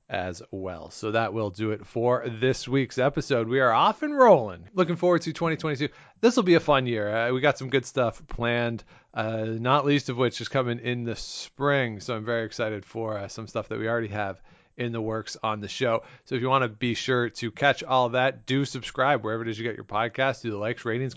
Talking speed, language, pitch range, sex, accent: 240 wpm, English, 115-140 Hz, male, American